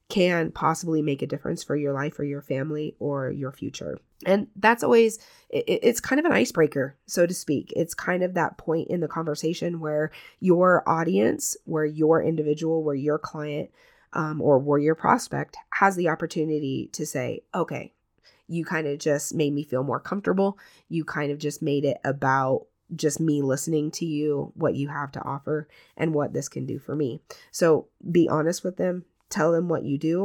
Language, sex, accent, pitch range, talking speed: English, female, American, 145-180 Hz, 190 wpm